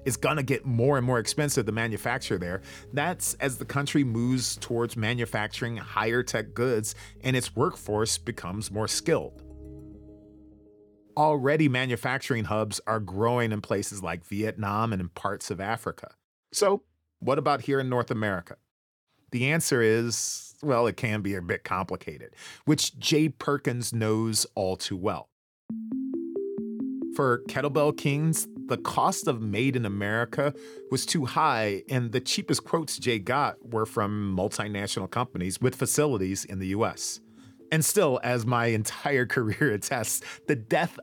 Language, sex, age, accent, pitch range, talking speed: English, male, 40-59, American, 105-145 Hz, 145 wpm